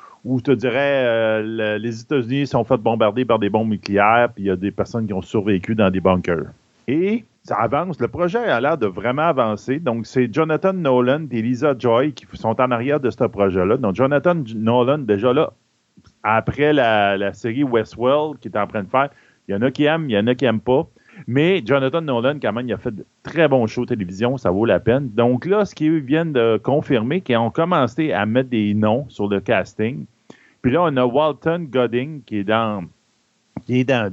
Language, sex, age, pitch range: French, male, 40-59, 110-135 Hz